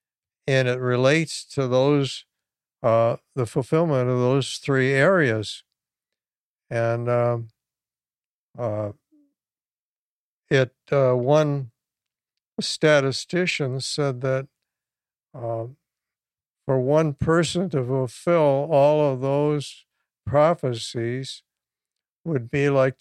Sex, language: male, English